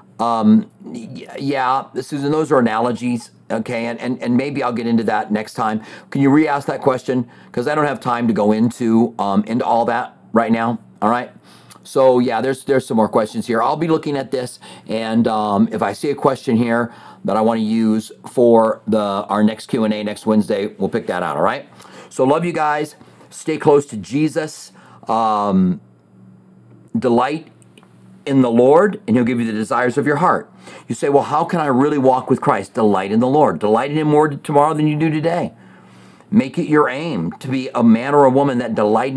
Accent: American